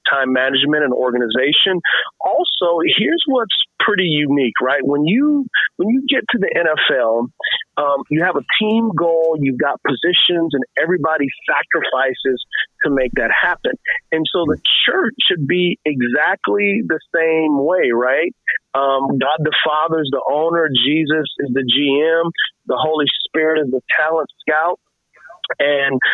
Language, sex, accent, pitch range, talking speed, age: English, male, American, 140-180 Hz, 145 wpm, 40-59